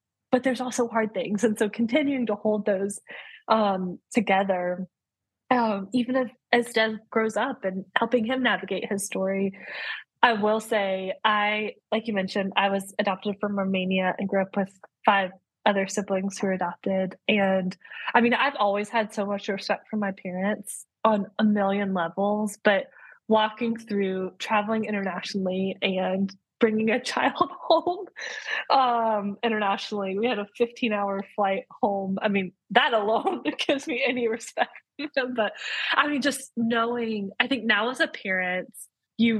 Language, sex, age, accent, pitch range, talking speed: English, female, 20-39, American, 195-235 Hz, 160 wpm